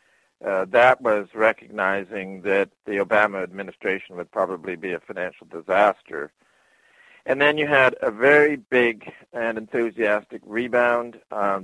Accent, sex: American, male